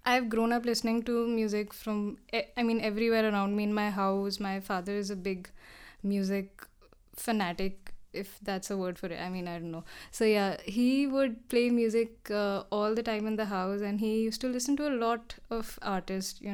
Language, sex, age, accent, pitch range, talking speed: English, female, 10-29, Indian, 195-225 Hz, 205 wpm